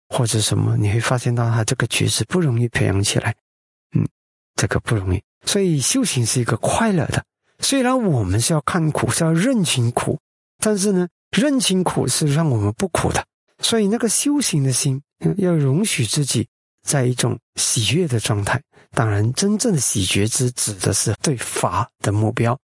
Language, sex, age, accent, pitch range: Chinese, male, 50-69, native, 120-185 Hz